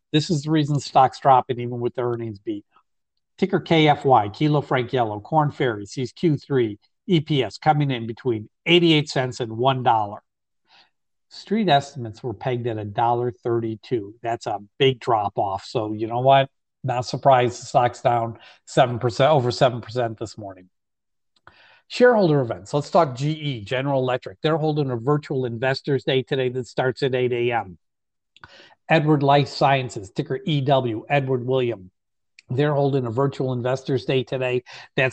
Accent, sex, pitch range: American, male, 120-145 Hz